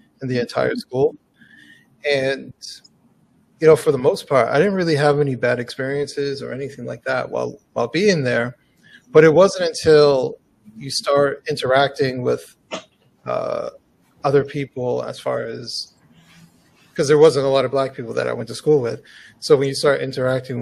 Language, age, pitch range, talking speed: English, 30-49, 130-150 Hz, 170 wpm